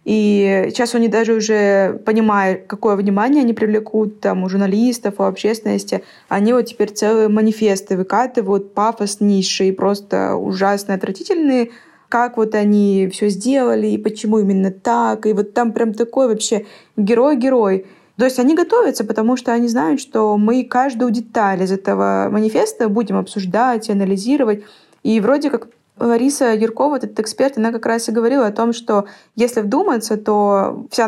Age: 20-39